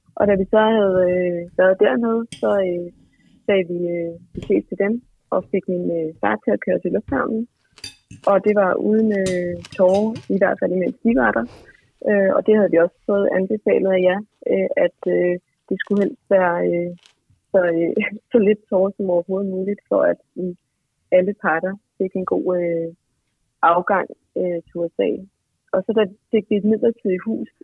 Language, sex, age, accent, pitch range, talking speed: Danish, female, 30-49, native, 175-210 Hz, 180 wpm